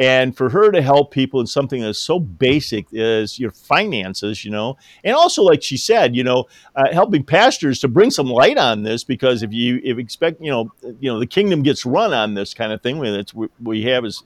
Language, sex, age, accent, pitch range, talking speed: English, male, 50-69, American, 120-170 Hz, 230 wpm